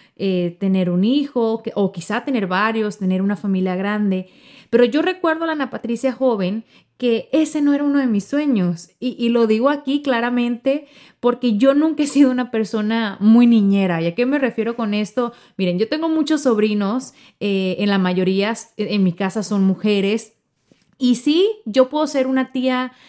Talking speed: 185 wpm